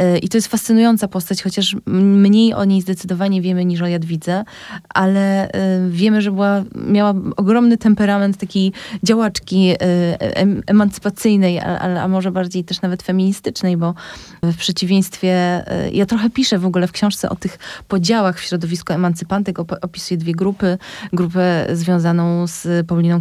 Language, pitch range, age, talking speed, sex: Polish, 175-200 Hz, 20-39, 135 wpm, female